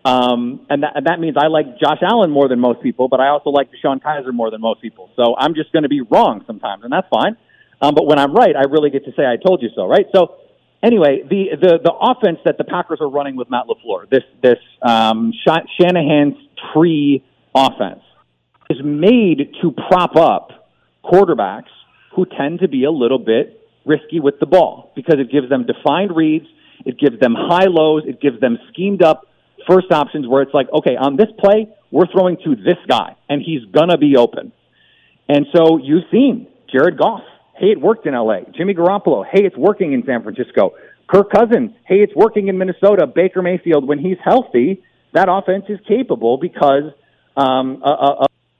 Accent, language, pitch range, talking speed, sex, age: American, English, 140-190 Hz, 200 wpm, male, 40-59